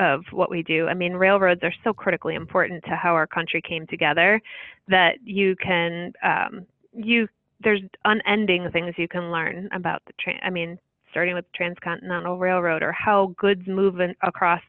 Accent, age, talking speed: American, 30-49, 180 wpm